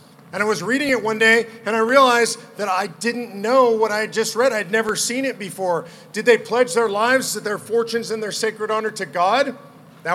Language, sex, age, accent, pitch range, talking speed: English, male, 40-59, American, 200-240 Hz, 230 wpm